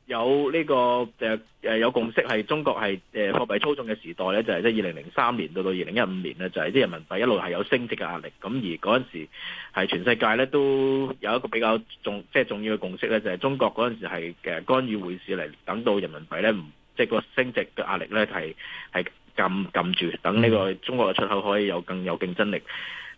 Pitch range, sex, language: 100-130 Hz, male, Chinese